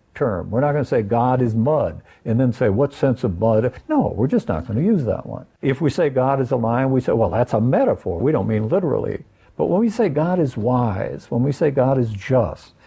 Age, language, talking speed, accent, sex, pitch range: 60-79, English, 255 wpm, American, male, 105-135 Hz